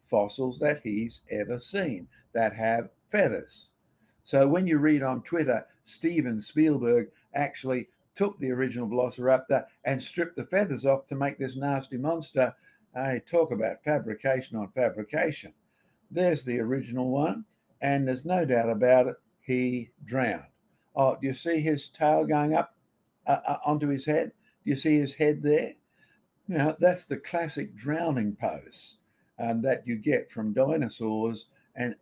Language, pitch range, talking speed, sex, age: English, 115-150 Hz, 150 wpm, male, 60-79